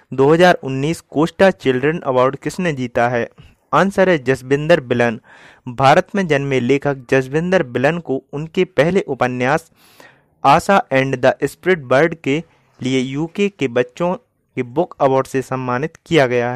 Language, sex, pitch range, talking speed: Hindi, male, 130-175 Hz, 140 wpm